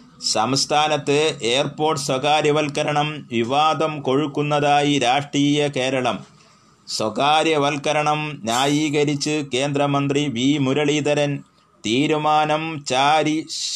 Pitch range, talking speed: 135-155 Hz, 60 wpm